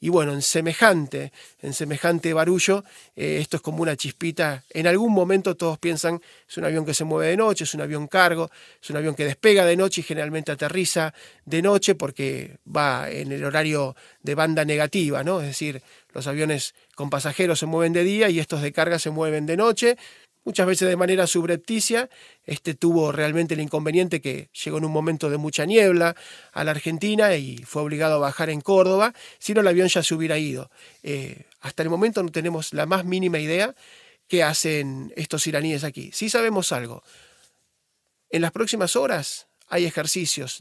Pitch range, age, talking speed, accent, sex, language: 150-185 Hz, 20-39, 190 wpm, Argentinian, male, Spanish